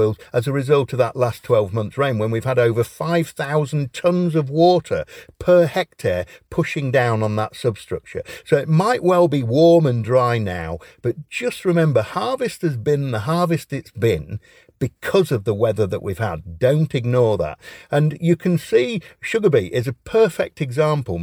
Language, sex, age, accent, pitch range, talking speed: English, male, 50-69, British, 115-155 Hz, 180 wpm